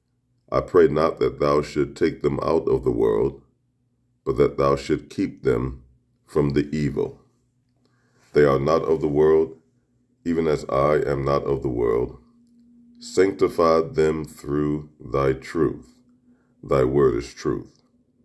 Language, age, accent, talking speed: English, 40-59, American, 145 wpm